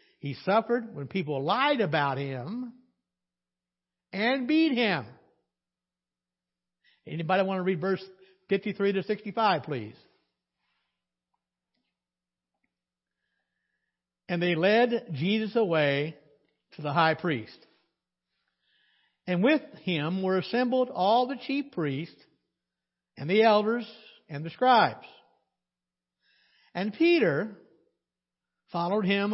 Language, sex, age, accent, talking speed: English, male, 60-79, American, 95 wpm